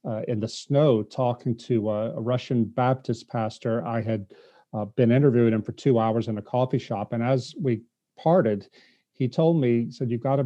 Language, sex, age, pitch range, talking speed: English, male, 40-59, 115-145 Hz, 205 wpm